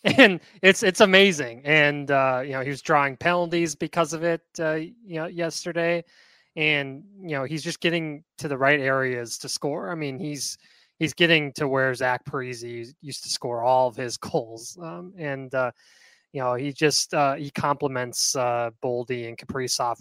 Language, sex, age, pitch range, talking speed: English, male, 20-39, 125-155 Hz, 185 wpm